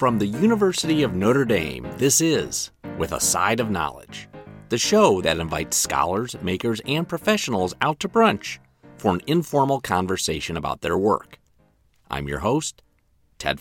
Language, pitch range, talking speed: English, 95-155 Hz, 155 wpm